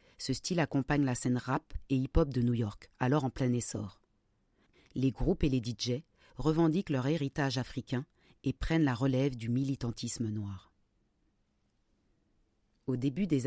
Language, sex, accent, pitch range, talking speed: French, female, French, 120-145 Hz, 150 wpm